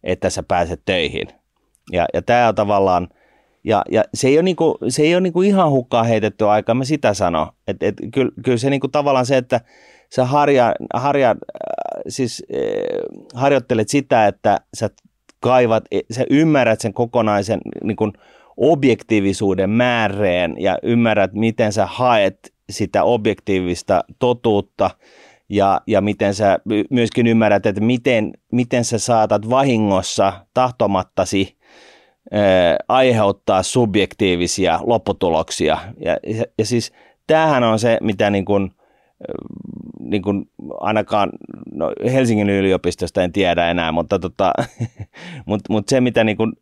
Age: 30-49